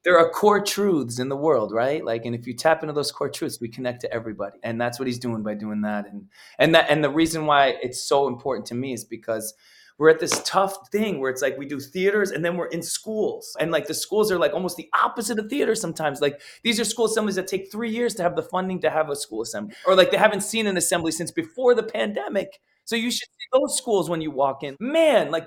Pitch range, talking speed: 140-210 Hz, 265 wpm